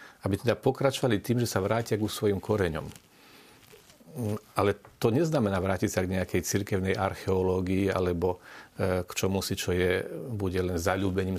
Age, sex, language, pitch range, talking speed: 40-59, male, Slovak, 95-120 Hz, 150 wpm